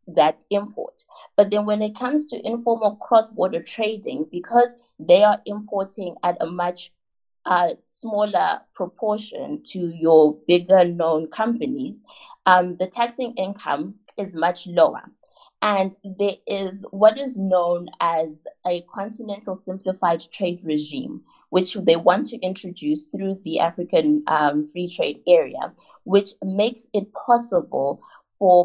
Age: 20-39